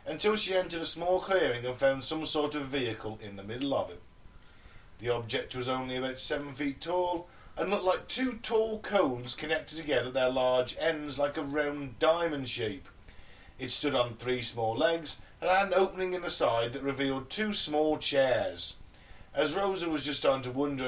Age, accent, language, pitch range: 40-59, British, English, 130-170 Hz